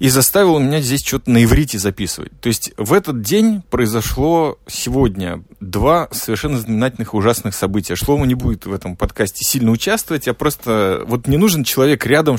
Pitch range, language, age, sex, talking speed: 110-145 Hz, Russian, 30-49, male, 170 wpm